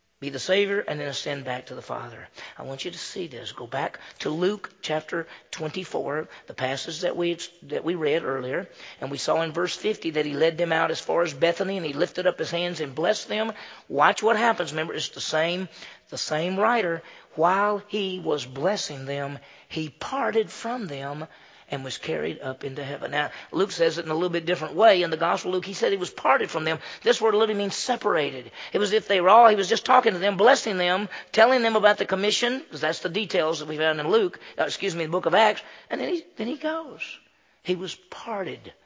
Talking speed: 230 wpm